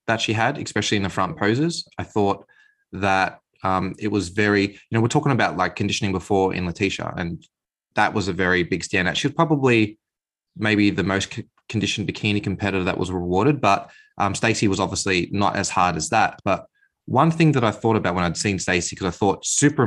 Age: 20-39